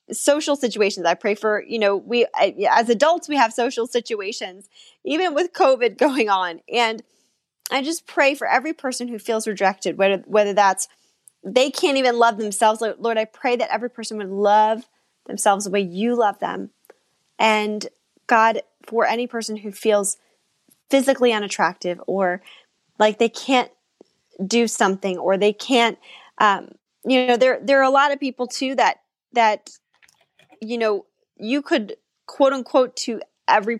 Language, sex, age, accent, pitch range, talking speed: English, female, 10-29, American, 210-265 Hz, 160 wpm